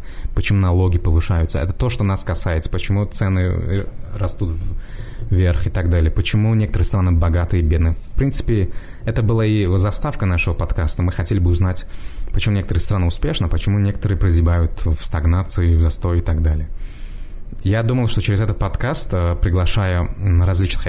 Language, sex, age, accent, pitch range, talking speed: Russian, male, 20-39, native, 85-105 Hz, 160 wpm